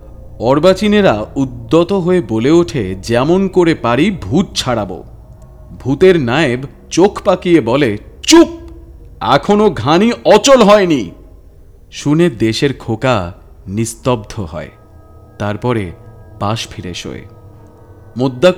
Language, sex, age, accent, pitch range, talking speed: Bengali, male, 40-59, native, 105-165 Hz, 95 wpm